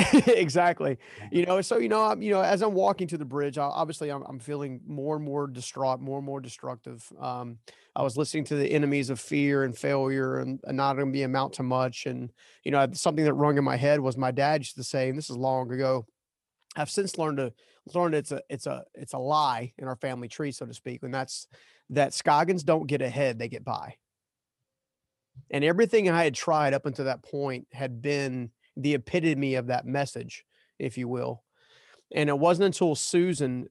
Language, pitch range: English, 130-155 Hz